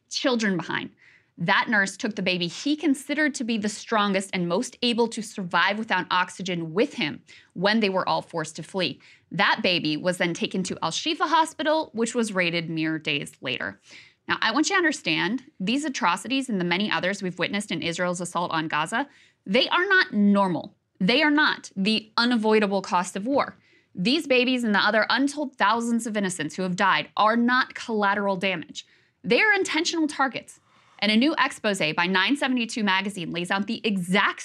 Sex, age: female, 20-39